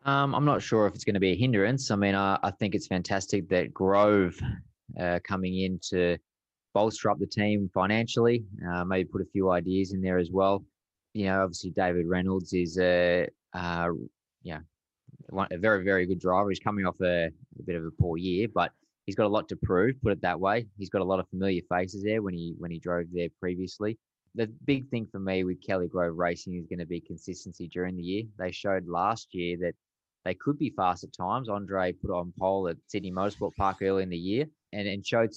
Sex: male